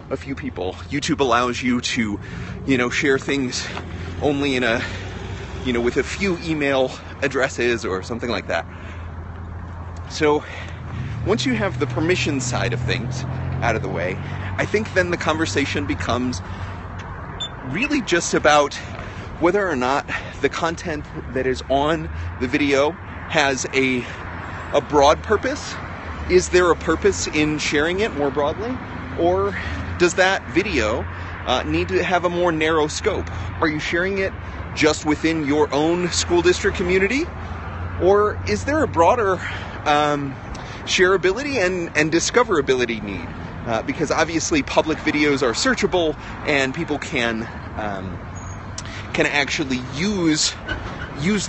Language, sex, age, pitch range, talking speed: English, male, 30-49, 95-160 Hz, 140 wpm